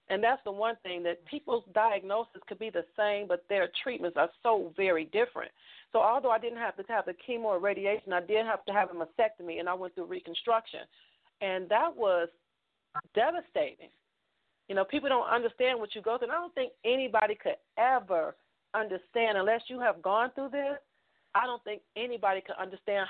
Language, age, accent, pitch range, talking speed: English, 40-59, American, 195-245 Hz, 195 wpm